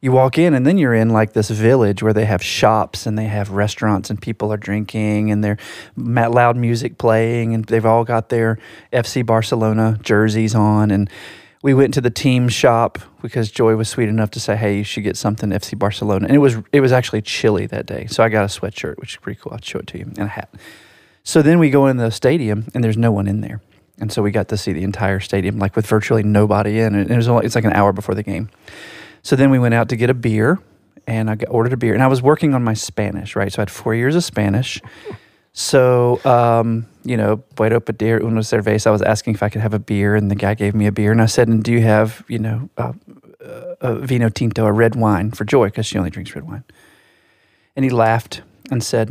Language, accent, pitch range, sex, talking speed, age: English, American, 105-120 Hz, male, 245 wpm, 30-49